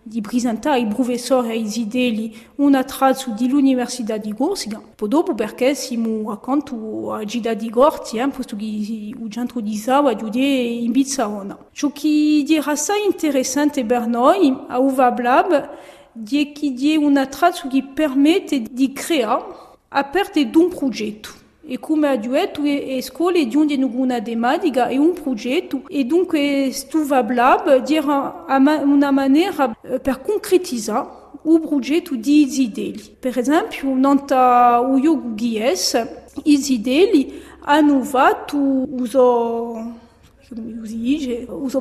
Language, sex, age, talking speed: French, female, 40-59, 90 wpm